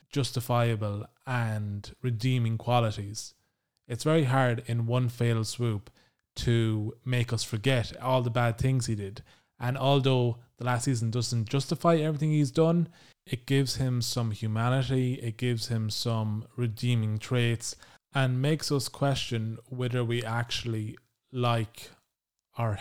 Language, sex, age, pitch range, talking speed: English, male, 20-39, 110-125 Hz, 135 wpm